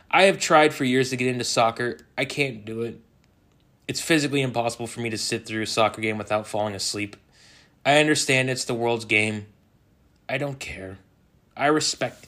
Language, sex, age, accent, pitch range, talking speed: English, male, 20-39, American, 110-145 Hz, 185 wpm